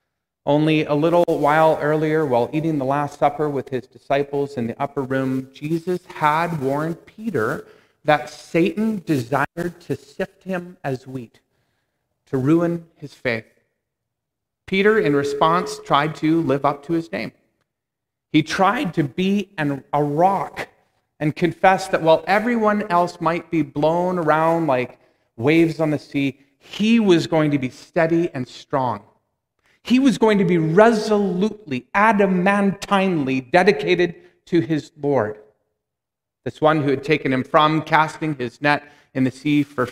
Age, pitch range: 40-59, 135-180 Hz